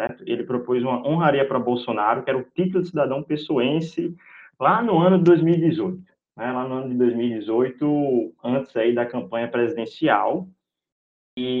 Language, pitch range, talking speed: Portuguese, 115-160 Hz, 155 wpm